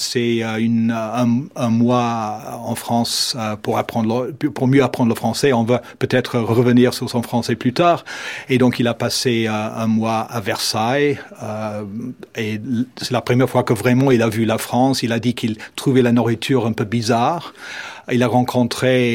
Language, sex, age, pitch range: French, male, 40-59, 110-130 Hz